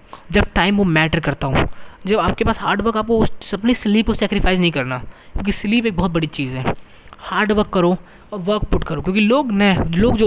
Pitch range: 160-210 Hz